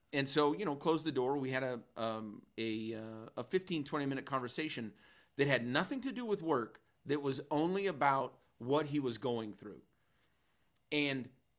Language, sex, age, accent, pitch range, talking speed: English, male, 40-59, American, 130-155 Hz, 180 wpm